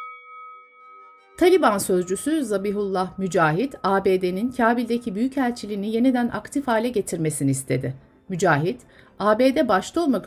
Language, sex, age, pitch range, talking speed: Turkish, female, 60-79, 160-255 Hz, 95 wpm